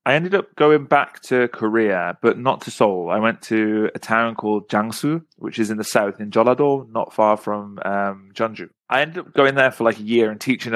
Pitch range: 105-125 Hz